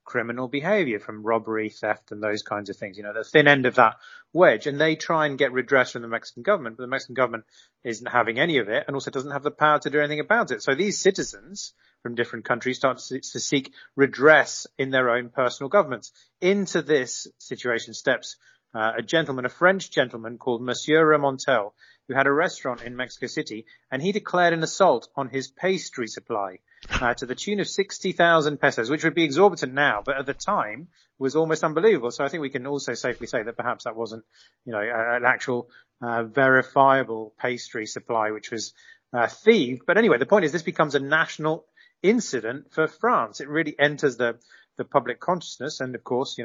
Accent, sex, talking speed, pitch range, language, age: British, male, 205 wpm, 125-155 Hz, English, 30-49